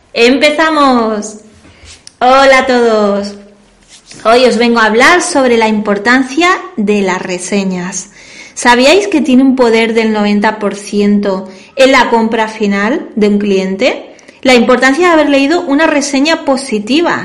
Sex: female